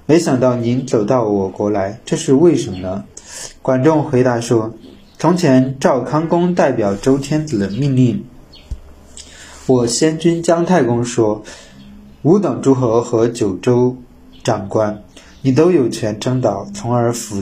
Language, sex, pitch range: Chinese, male, 105-140 Hz